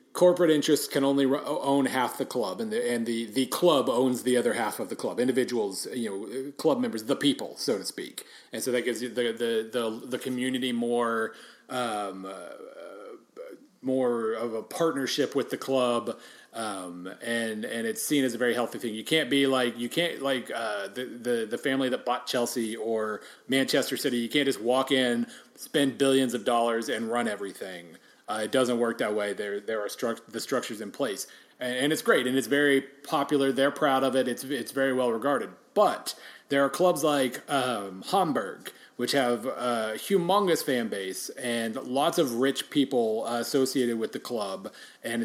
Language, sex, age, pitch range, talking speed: English, male, 30-49, 120-145 Hz, 190 wpm